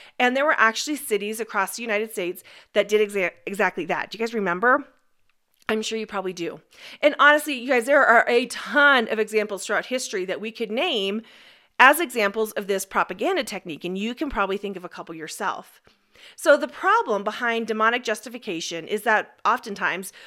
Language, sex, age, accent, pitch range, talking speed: English, female, 40-59, American, 210-285 Hz, 185 wpm